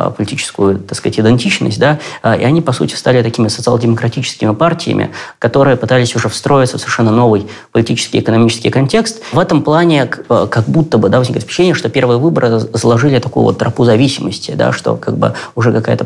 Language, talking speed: Russian, 175 wpm